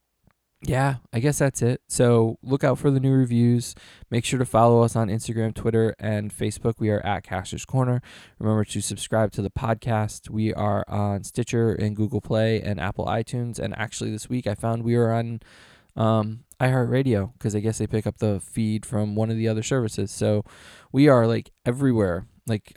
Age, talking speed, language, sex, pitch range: 20-39, 195 wpm, English, male, 105-120 Hz